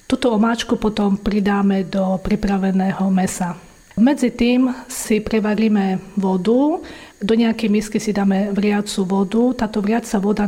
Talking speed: 125 wpm